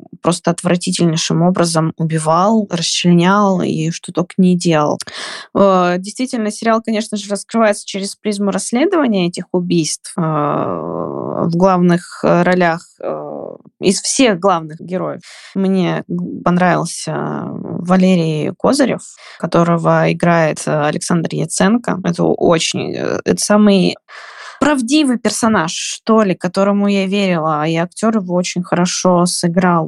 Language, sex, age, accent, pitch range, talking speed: Russian, female, 20-39, native, 170-200 Hz, 100 wpm